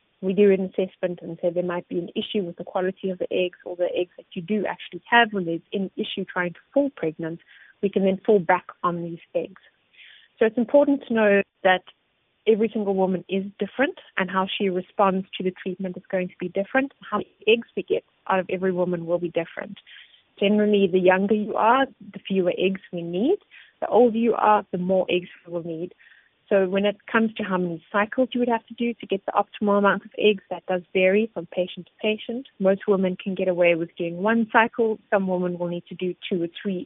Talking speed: 230 wpm